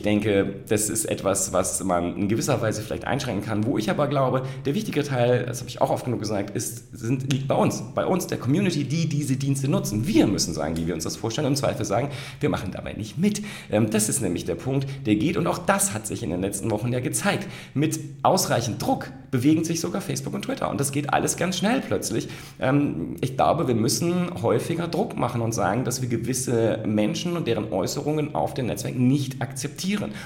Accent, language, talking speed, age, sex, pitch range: German, German, 220 wpm, 40-59, male, 105-145 Hz